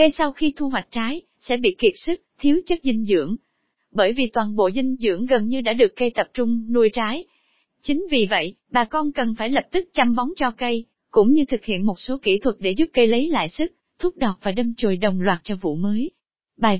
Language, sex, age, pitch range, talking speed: Vietnamese, female, 20-39, 215-280 Hz, 240 wpm